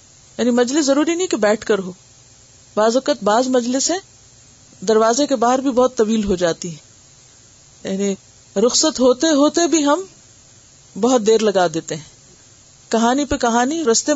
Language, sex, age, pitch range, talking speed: Urdu, female, 50-69, 200-250 Hz, 155 wpm